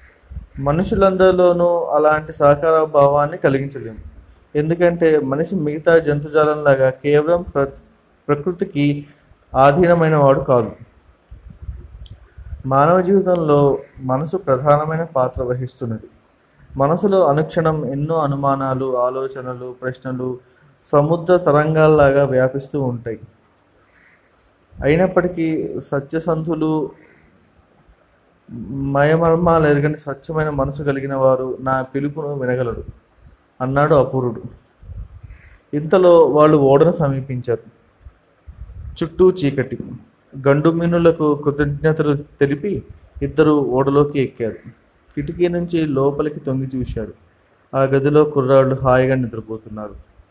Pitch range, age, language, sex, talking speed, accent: 125-155 Hz, 20-39, Telugu, male, 75 wpm, native